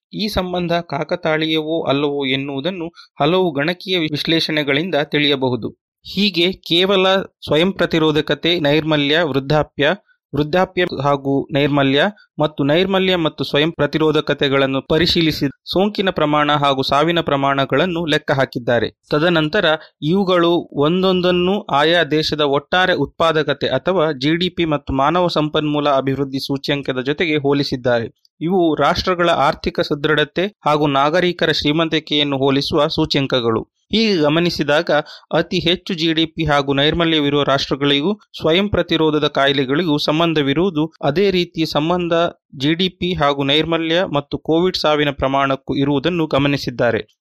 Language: Kannada